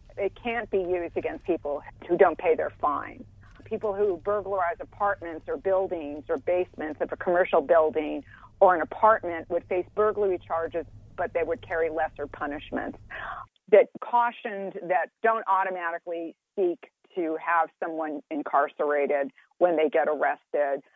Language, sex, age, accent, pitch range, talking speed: English, female, 40-59, American, 155-195 Hz, 145 wpm